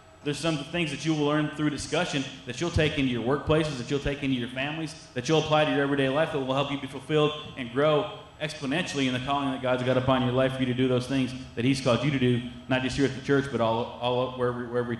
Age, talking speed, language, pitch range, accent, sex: 30-49, 280 wpm, English, 130-150 Hz, American, male